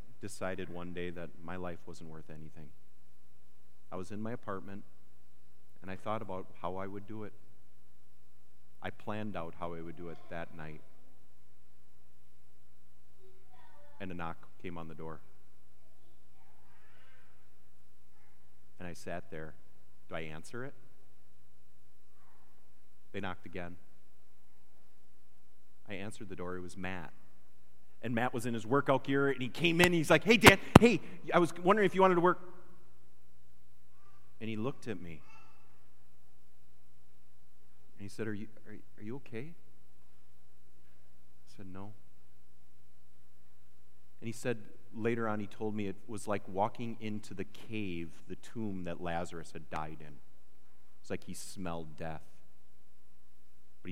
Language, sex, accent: English, male, American